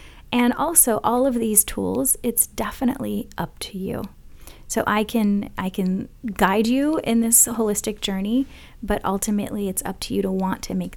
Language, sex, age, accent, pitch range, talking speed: English, female, 30-49, American, 185-225 Hz, 175 wpm